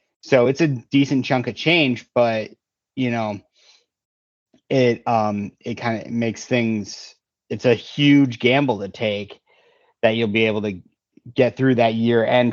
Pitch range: 120-150 Hz